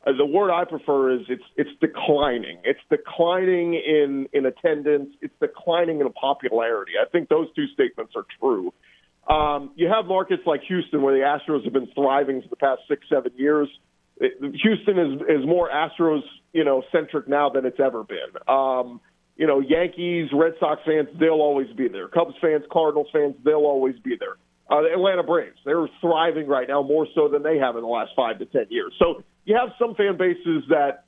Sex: male